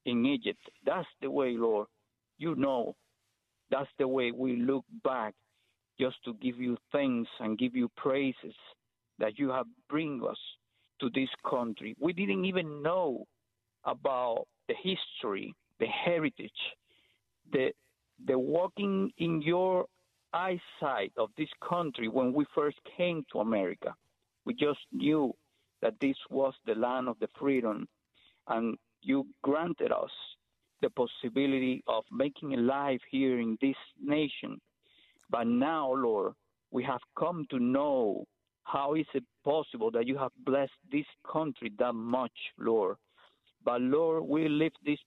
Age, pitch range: 50-69, 125-165 Hz